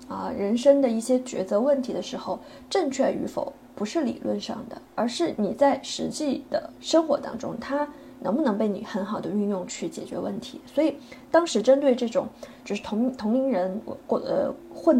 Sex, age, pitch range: female, 20-39, 215-280 Hz